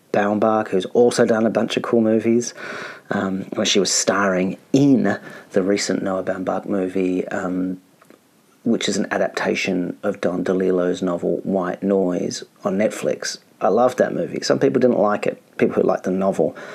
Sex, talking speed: male, 170 wpm